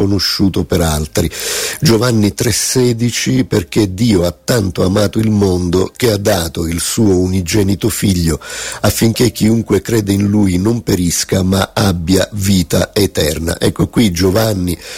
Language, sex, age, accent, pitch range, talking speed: Italian, male, 50-69, native, 90-110 Hz, 130 wpm